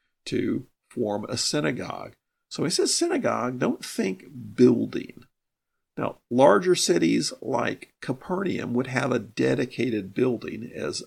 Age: 50-69